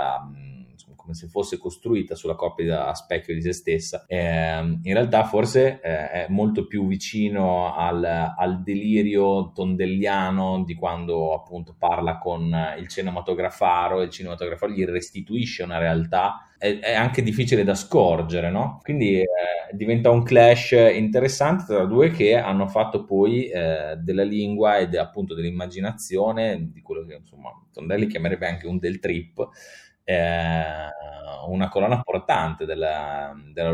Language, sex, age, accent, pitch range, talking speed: Italian, male, 30-49, native, 85-100 Hz, 140 wpm